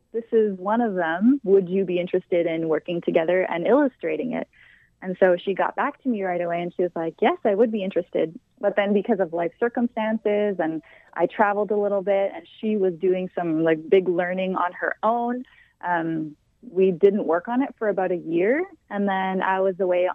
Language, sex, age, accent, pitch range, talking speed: English, female, 20-39, American, 180-215 Hz, 210 wpm